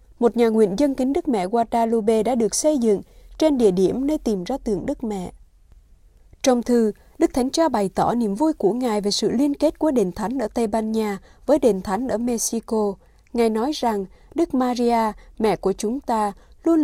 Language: Vietnamese